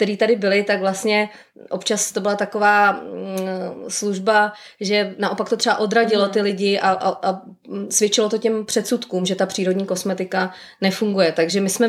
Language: Czech